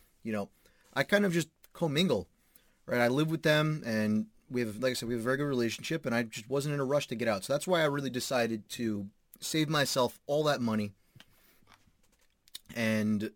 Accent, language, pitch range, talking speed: American, English, 110-150 Hz, 210 wpm